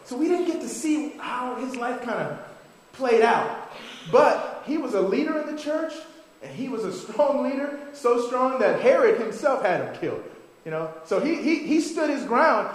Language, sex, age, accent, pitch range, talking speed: English, male, 30-49, American, 200-315 Hz, 205 wpm